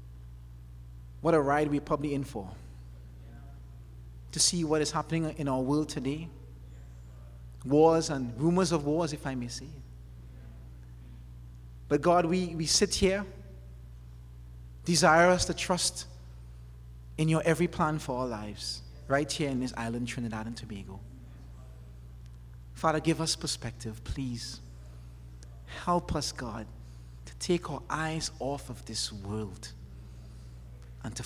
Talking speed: 130 wpm